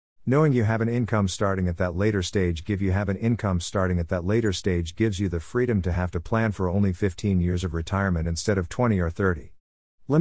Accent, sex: American, male